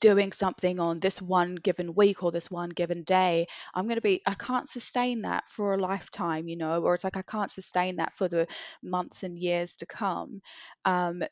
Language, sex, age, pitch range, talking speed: English, female, 20-39, 170-195 Hz, 210 wpm